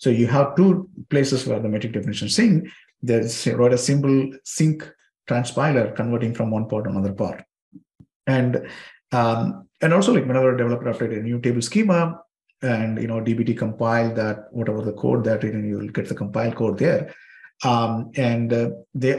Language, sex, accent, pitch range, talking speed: English, male, Indian, 105-130 Hz, 180 wpm